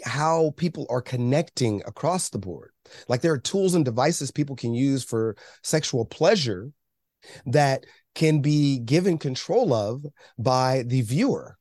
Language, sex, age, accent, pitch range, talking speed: English, male, 30-49, American, 115-150 Hz, 145 wpm